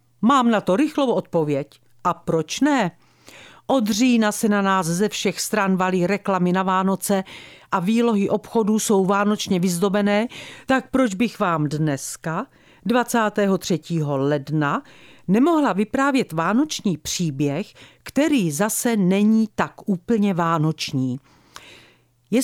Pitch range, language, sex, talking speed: 155-230 Hz, Czech, female, 120 wpm